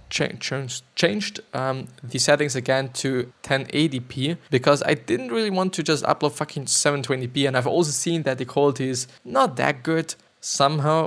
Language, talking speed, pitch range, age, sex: English, 165 wpm, 125-165 Hz, 20-39, male